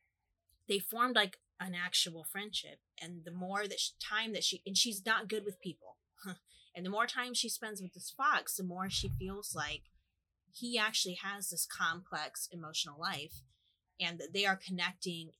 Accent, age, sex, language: American, 30-49, female, English